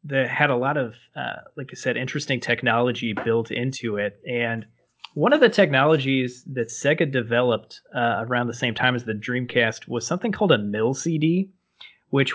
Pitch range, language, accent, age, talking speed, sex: 110-130 Hz, English, American, 20-39, 180 wpm, male